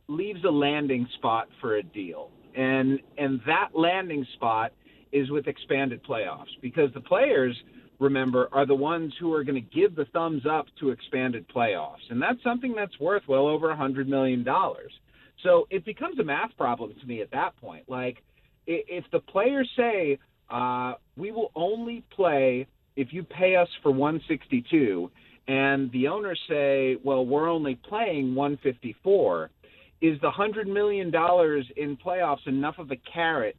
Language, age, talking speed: English, 40-59, 165 wpm